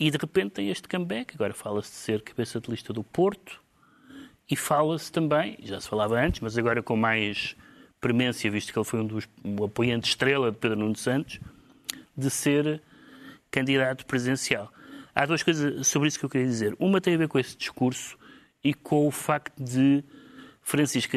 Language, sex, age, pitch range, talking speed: Portuguese, male, 30-49, 120-160 Hz, 185 wpm